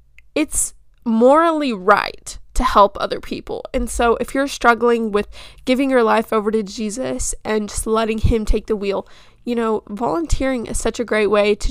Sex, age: female, 10-29